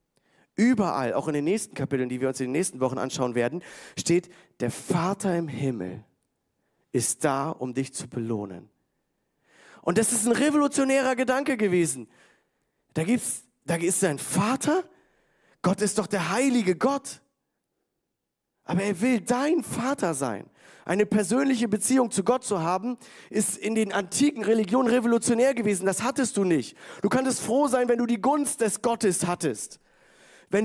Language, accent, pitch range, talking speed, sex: German, German, 170-235 Hz, 160 wpm, male